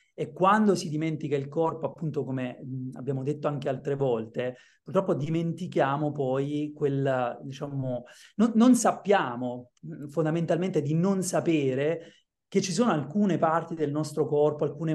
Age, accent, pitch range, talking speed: 30-49, native, 145-185 Hz, 135 wpm